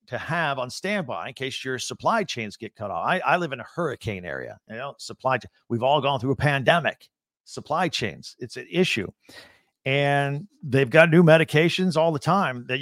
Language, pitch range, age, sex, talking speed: English, 130-175 Hz, 50-69, male, 195 wpm